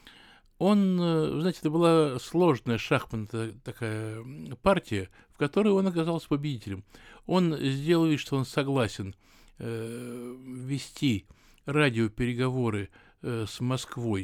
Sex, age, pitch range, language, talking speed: male, 60-79, 115-155 Hz, Russian, 105 wpm